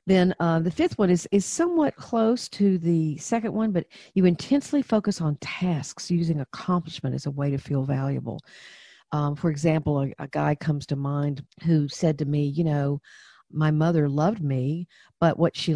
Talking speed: 185 wpm